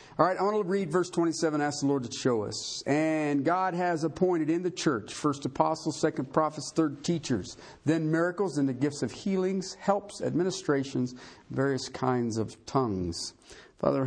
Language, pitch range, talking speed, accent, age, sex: English, 105-140 Hz, 175 wpm, American, 50-69, male